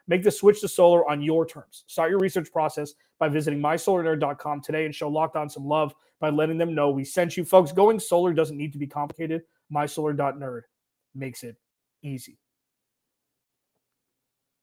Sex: male